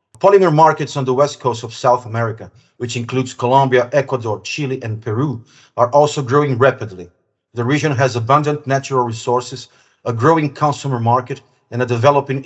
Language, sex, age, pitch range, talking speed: English, male, 40-59, 120-140 Hz, 160 wpm